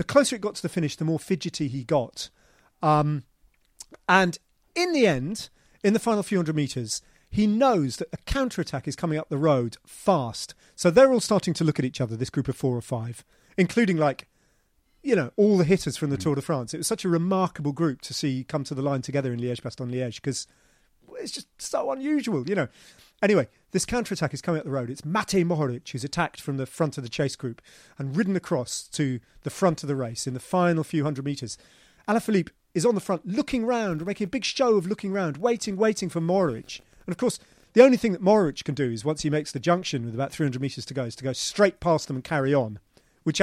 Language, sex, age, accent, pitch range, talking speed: English, male, 40-59, British, 135-190 Hz, 235 wpm